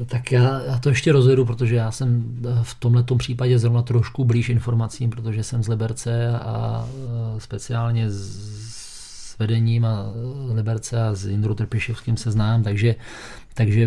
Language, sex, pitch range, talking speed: Czech, male, 110-120 Hz, 145 wpm